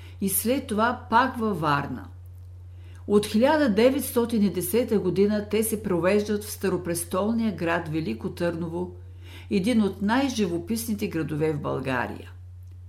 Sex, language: female, Bulgarian